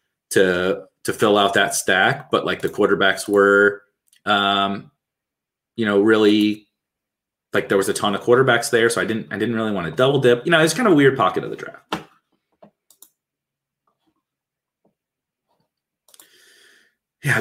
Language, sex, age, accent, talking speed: English, male, 30-49, American, 155 wpm